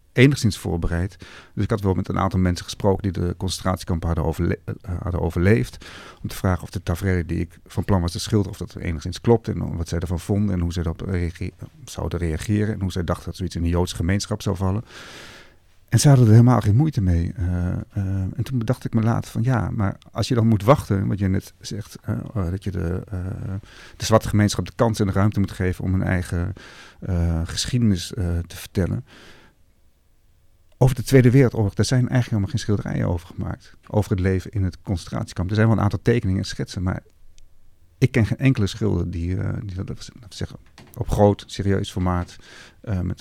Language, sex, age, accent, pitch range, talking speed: Dutch, male, 50-69, Dutch, 90-110 Hz, 215 wpm